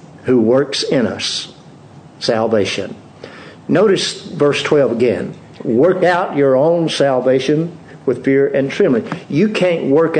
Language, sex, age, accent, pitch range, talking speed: English, male, 50-69, American, 130-175 Hz, 125 wpm